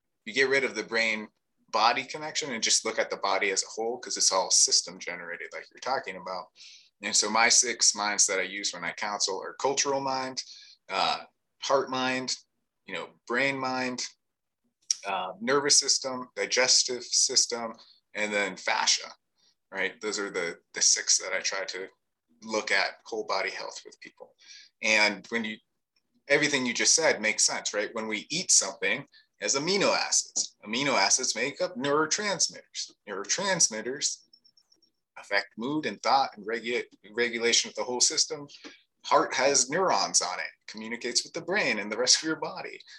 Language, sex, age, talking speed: English, male, 30-49, 170 wpm